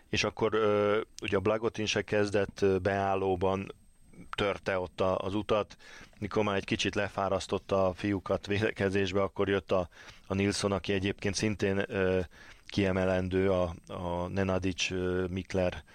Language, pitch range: Hungarian, 95-110 Hz